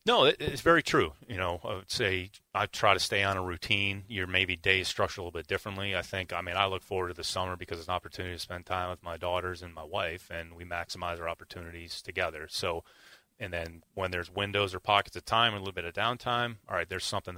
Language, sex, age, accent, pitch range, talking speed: English, male, 30-49, American, 90-100 Hz, 255 wpm